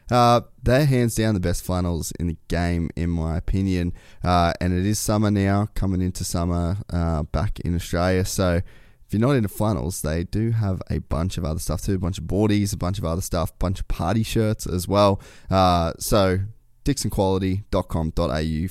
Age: 20-39